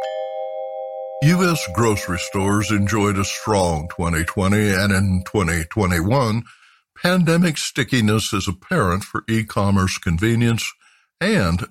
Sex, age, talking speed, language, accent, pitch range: male, 60-79, 90 wpm, English, American, 85-110 Hz